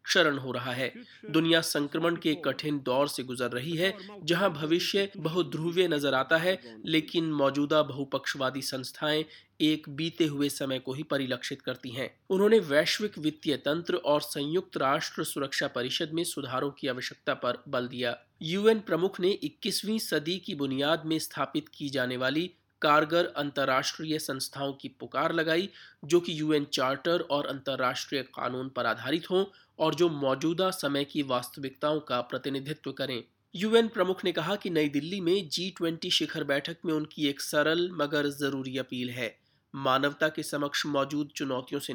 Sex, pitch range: male, 135-170 Hz